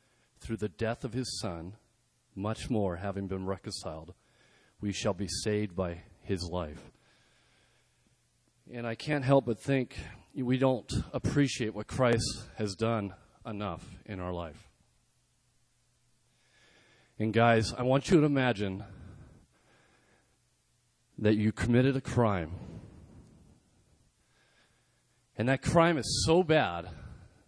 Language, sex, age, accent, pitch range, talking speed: English, male, 40-59, American, 95-125 Hz, 115 wpm